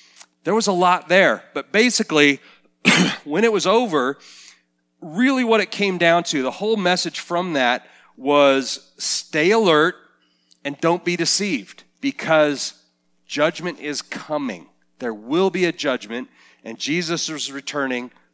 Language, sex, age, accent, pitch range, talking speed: English, male, 40-59, American, 110-155 Hz, 135 wpm